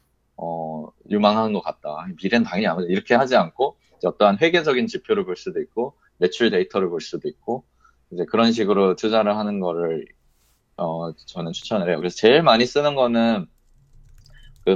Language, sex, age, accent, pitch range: Korean, male, 20-39, native, 90-130 Hz